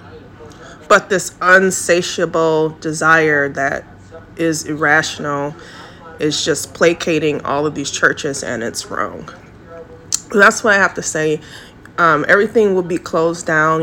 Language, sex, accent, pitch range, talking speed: English, female, American, 145-170 Hz, 125 wpm